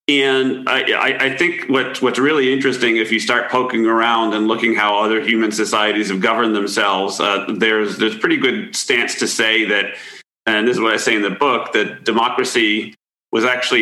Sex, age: male, 40-59